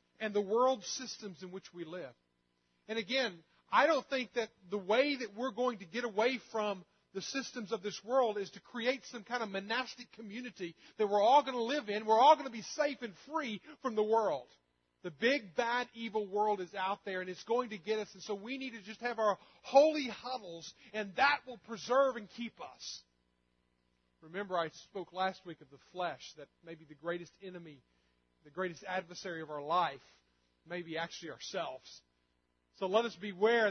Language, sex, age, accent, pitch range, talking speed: English, male, 40-59, American, 180-255 Hz, 200 wpm